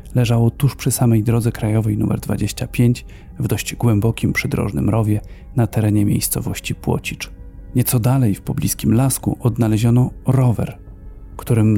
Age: 40-59